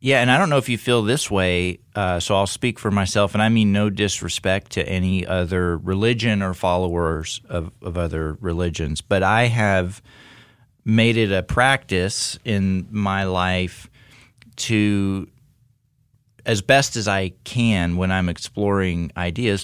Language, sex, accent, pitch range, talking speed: English, male, American, 95-115 Hz, 155 wpm